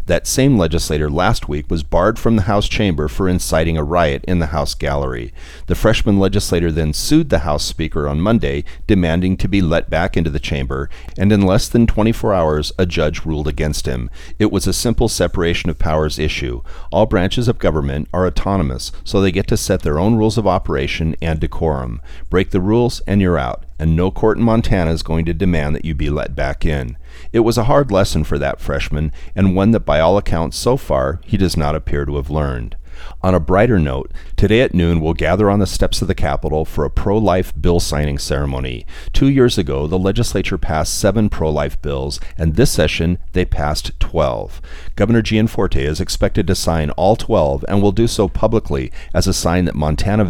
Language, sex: English, male